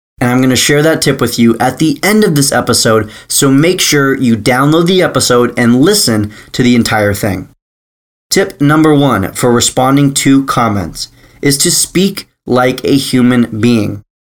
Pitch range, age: 115-155 Hz, 20-39